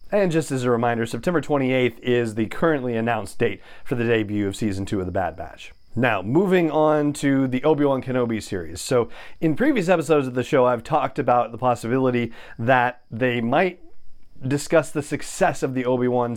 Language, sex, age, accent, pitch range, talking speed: English, male, 30-49, American, 120-155 Hz, 185 wpm